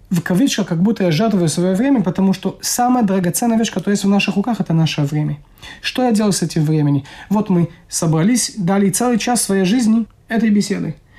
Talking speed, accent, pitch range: 200 wpm, native, 165-220 Hz